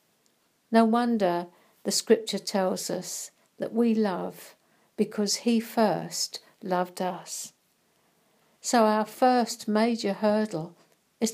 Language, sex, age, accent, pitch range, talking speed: English, female, 60-79, British, 185-220 Hz, 105 wpm